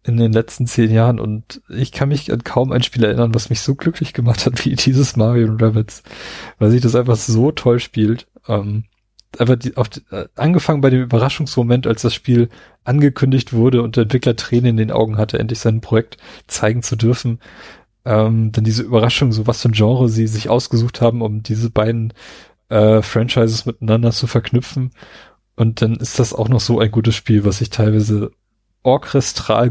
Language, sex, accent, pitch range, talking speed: German, male, German, 110-125 Hz, 190 wpm